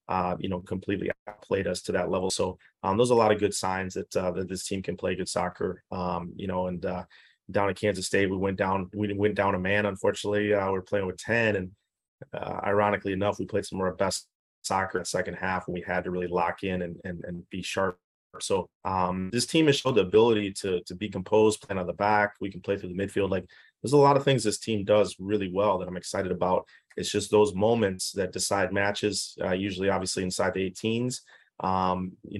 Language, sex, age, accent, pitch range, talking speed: English, male, 30-49, American, 95-105 Hz, 240 wpm